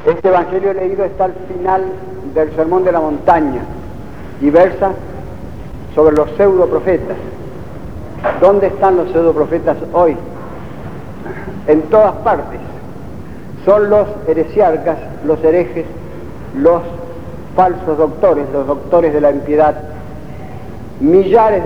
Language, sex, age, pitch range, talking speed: Spanish, male, 50-69, 160-200 Hz, 105 wpm